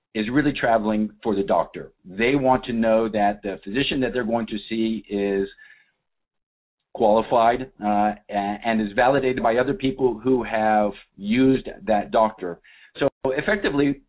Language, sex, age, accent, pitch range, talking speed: English, male, 50-69, American, 105-130 Hz, 145 wpm